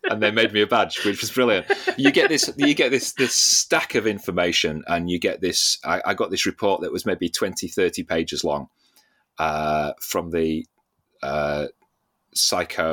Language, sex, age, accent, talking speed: English, male, 30-49, British, 185 wpm